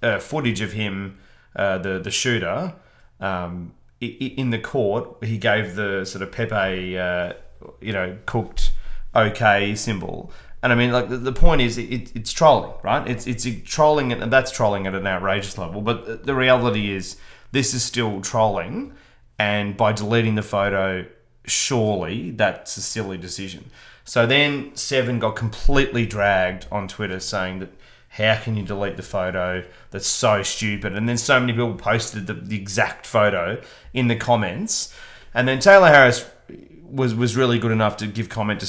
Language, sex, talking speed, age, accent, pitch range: English, male, 165 wpm, 30-49, Australian, 100-120 Hz